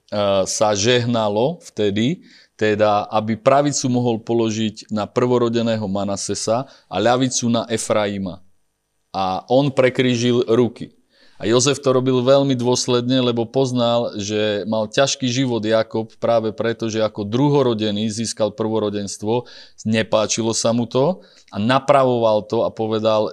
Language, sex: Slovak, male